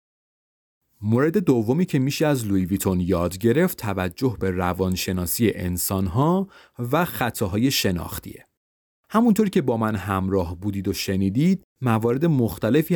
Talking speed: 120 wpm